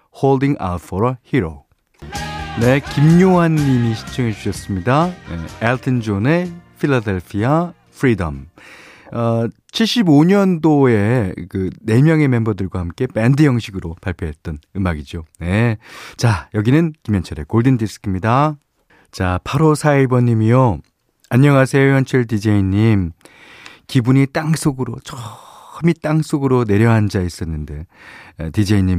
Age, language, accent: 40-59, Korean, native